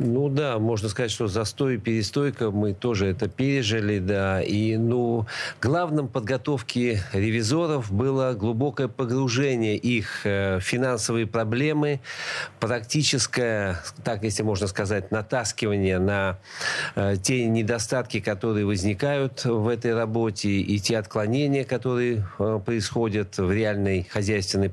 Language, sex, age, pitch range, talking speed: Russian, male, 40-59, 105-125 Hz, 115 wpm